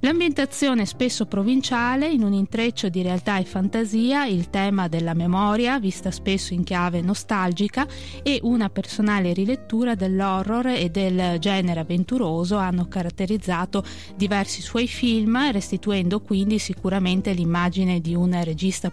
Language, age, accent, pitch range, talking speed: Italian, 20-39, native, 180-225 Hz, 125 wpm